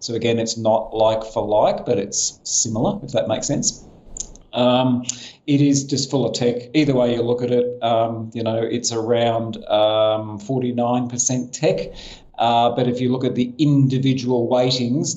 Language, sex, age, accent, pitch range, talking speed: English, male, 40-59, Australian, 115-130 Hz, 175 wpm